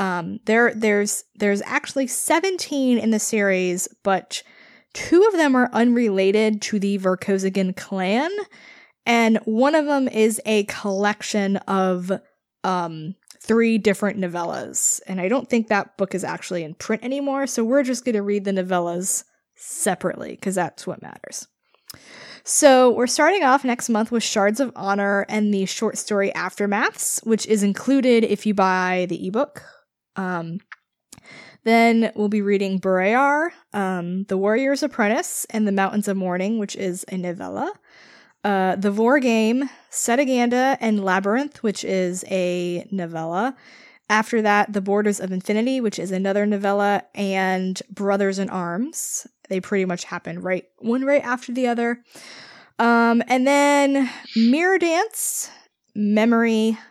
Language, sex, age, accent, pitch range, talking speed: English, female, 20-39, American, 195-245 Hz, 145 wpm